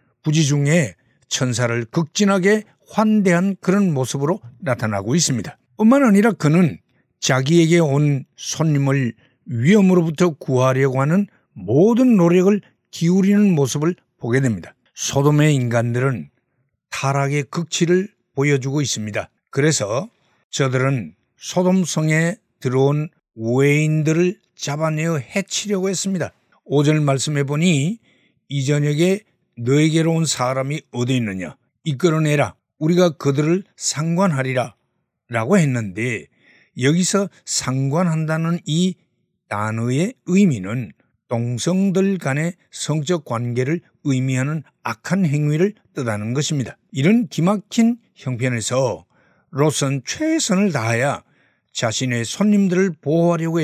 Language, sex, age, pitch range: Korean, male, 60-79, 130-180 Hz